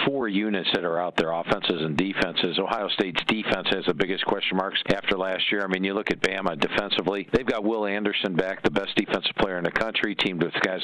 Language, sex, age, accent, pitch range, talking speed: English, male, 50-69, American, 100-120 Hz, 235 wpm